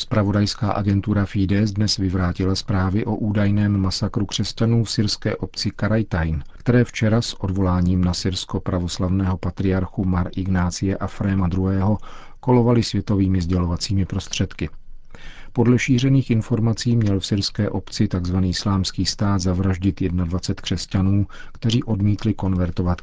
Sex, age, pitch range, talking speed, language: male, 40-59, 95-105 Hz, 115 wpm, Czech